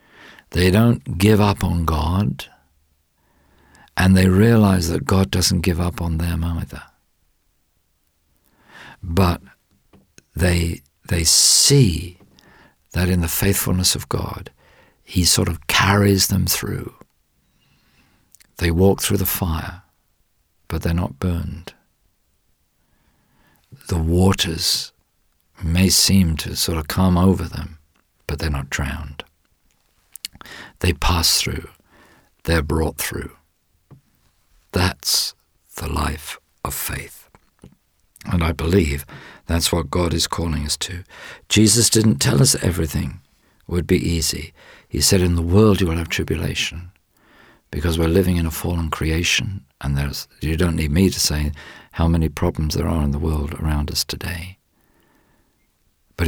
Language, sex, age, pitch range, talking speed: English, male, 50-69, 75-95 Hz, 130 wpm